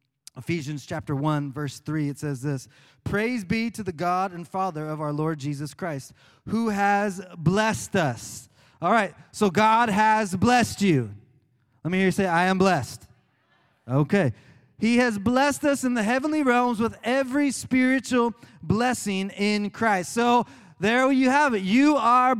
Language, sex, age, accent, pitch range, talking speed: English, male, 30-49, American, 195-250 Hz, 165 wpm